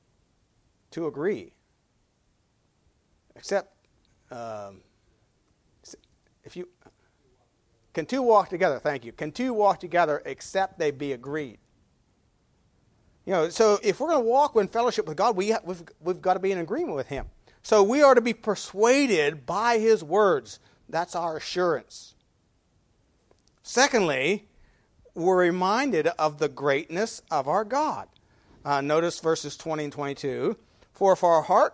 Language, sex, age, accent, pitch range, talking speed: English, male, 40-59, American, 145-240 Hz, 135 wpm